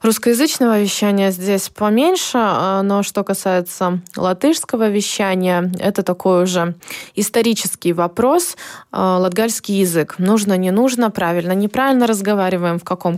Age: 20-39